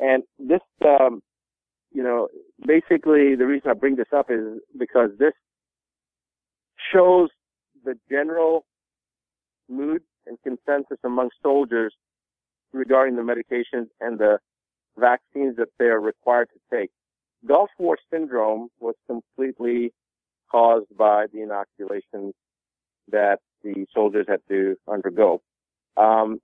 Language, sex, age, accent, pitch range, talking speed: English, male, 50-69, American, 110-135 Hz, 115 wpm